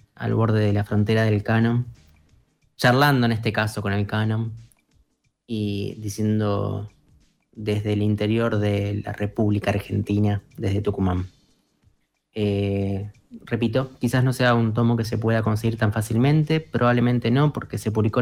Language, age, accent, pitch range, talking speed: Spanish, 20-39, Argentinian, 105-120 Hz, 140 wpm